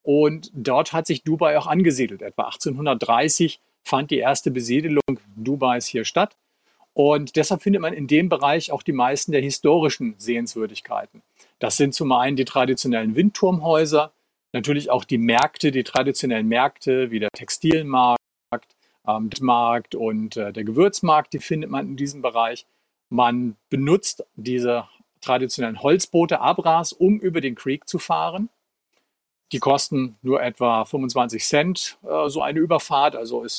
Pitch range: 125-160 Hz